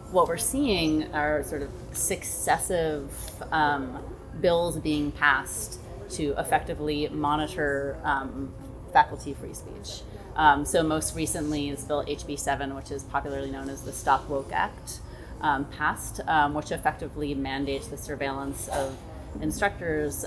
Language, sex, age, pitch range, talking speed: English, female, 30-49, 135-150 Hz, 130 wpm